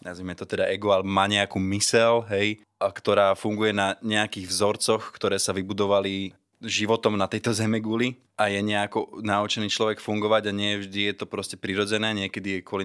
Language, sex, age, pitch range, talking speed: Slovak, male, 20-39, 100-110 Hz, 185 wpm